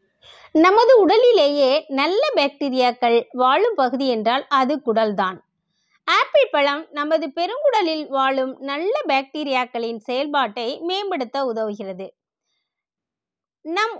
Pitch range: 240-330 Hz